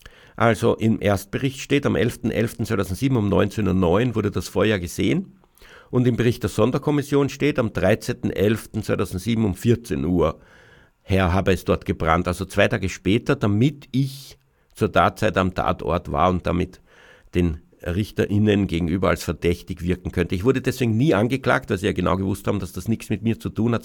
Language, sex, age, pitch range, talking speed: German, male, 60-79, 95-115 Hz, 170 wpm